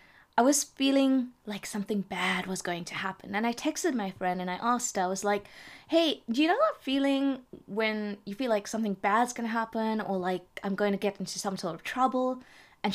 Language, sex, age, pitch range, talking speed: English, female, 20-39, 185-235 Hz, 225 wpm